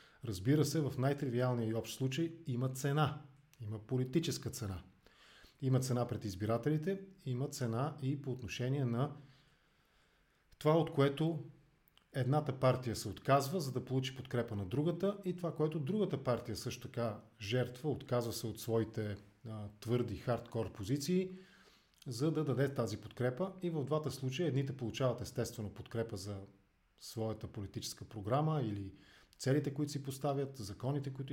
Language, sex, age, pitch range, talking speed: English, male, 40-59, 115-140 Hz, 140 wpm